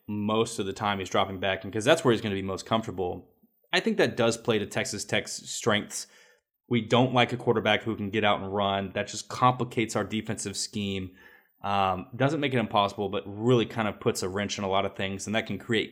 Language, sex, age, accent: English, male, 20-39, American